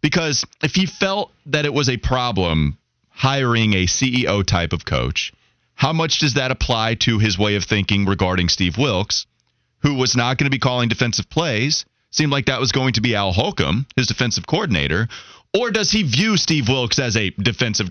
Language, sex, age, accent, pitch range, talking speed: English, male, 30-49, American, 100-145 Hz, 195 wpm